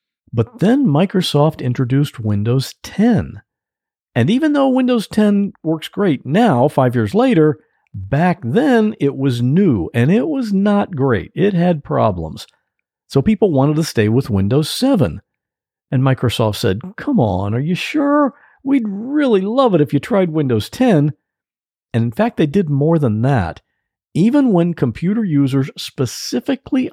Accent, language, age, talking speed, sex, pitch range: American, English, 50-69, 150 wpm, male, 130-200 Hz